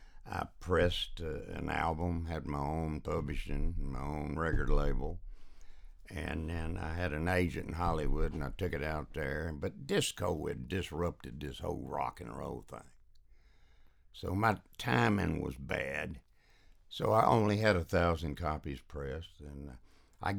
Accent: American